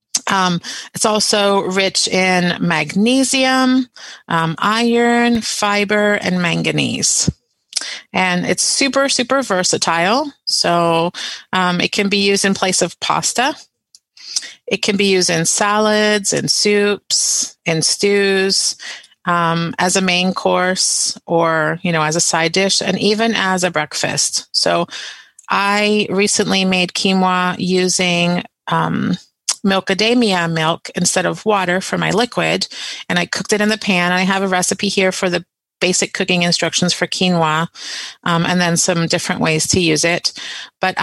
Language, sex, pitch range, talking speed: English, female, 175-205 Hz, 140 wpm